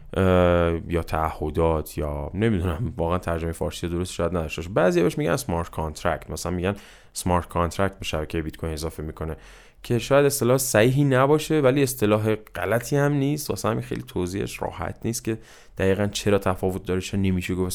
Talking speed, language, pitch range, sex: 155 wpm, Persian, 85-115 Hz, male